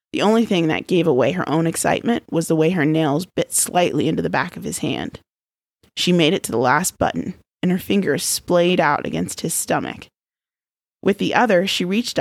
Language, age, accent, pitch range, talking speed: English, 20-39, American, 160-210 Hz, 205 wpm